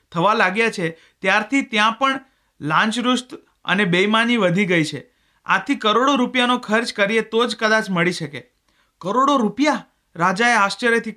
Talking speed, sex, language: 140 wpm, male, Gujarati